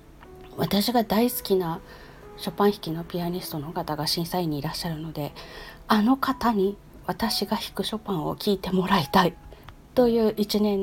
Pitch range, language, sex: 165-230 Hz, Japanese, female